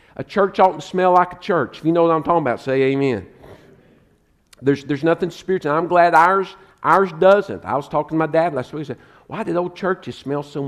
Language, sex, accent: English, male, American